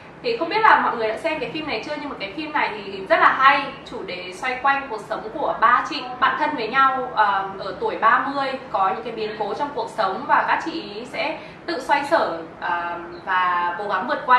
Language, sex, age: Vietnamese, female, 20-39